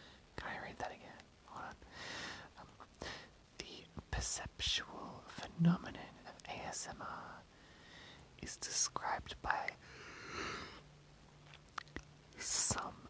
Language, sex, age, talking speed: English, male, 30-49, 75 wpm